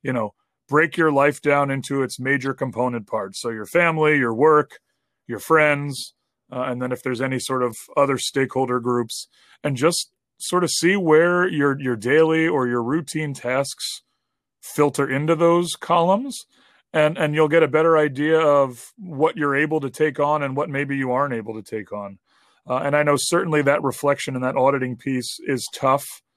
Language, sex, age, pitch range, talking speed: English, male, 30-49, 125-150 Hz, 185 wpm